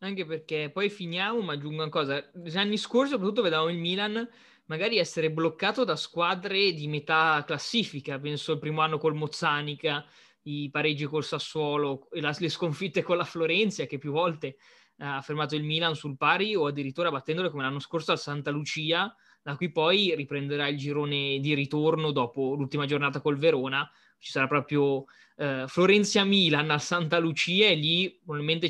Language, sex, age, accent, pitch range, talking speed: Italian, male, 20-39, native, 145-175 Hz, 165 wpm